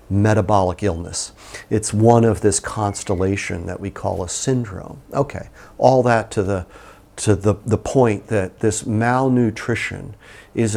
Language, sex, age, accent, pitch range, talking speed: English, male, 50-69, American, 100-115 Hz, 140 wpm